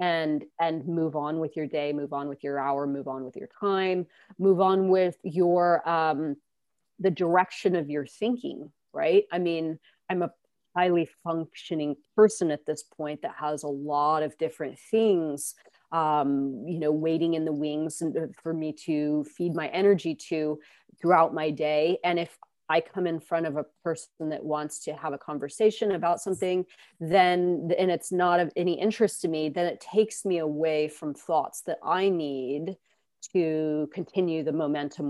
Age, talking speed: 30-49, 175 wpm